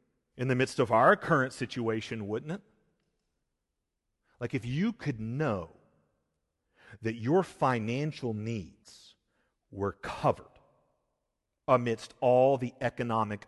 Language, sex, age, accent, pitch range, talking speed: English, male, 40-59, American, 100-135 Hz, 105 wpm